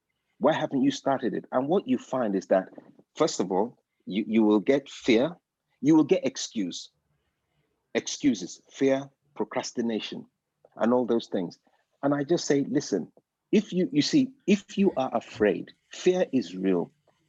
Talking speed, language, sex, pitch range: 160 wpm, English, male, 130-200 Hz